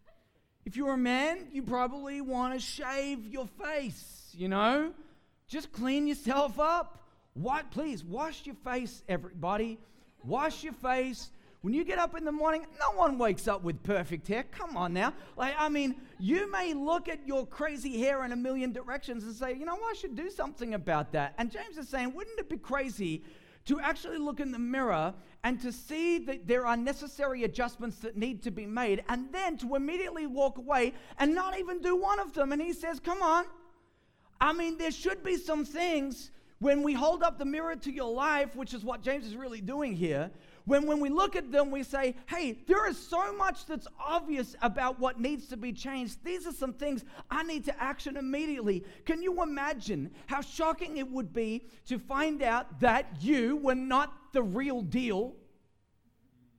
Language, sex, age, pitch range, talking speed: English, male, 40-59, 235-305 Hz, 195 wpm